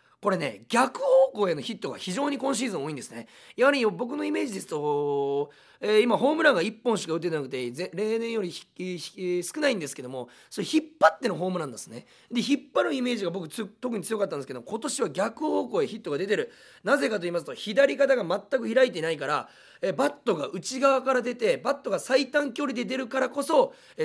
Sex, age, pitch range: male, 40-59, 170-265 Hz